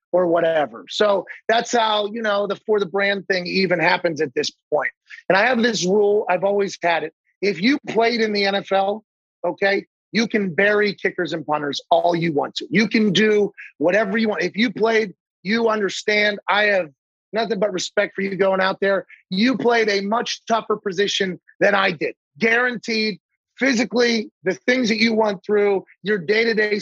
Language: English